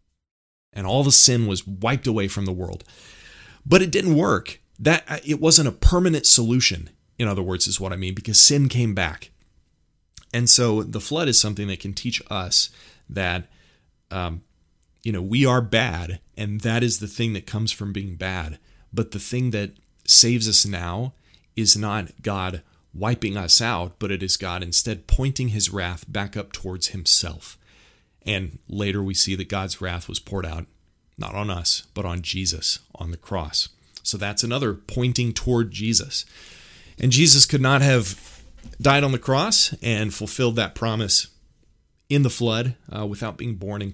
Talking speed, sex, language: 175 wpm, male, English